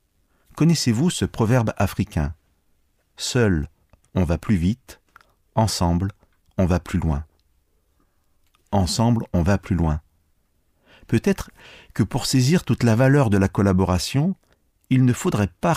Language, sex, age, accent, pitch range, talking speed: French, male, 50-69, French, 85-120 Hz, 125 wpm